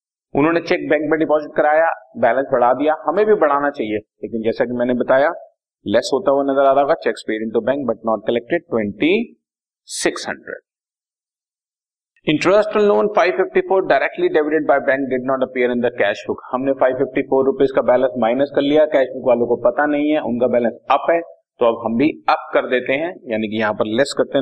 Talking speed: 185 wpm